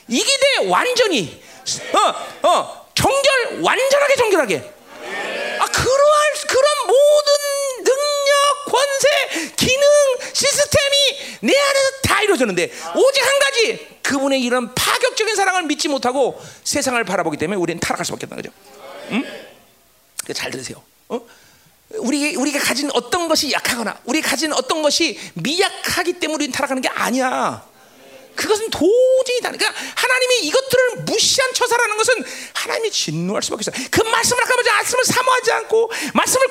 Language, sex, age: Korean, male, 40-59